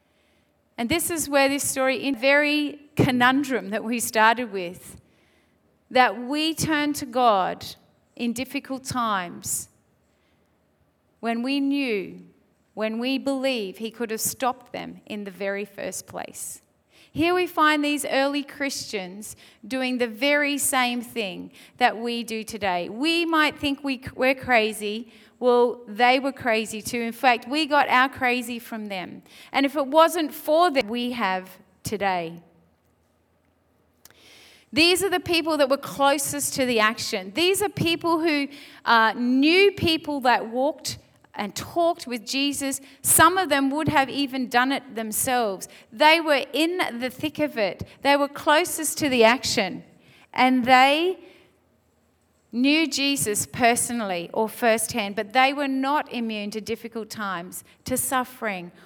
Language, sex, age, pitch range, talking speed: English, female, 30-49, 220-285 Hz, 145 wpm